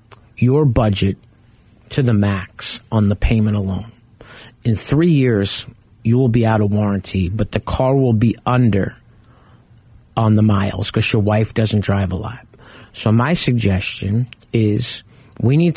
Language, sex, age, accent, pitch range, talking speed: English, male, 50-69, American, 105-125 Hz, 150 wpm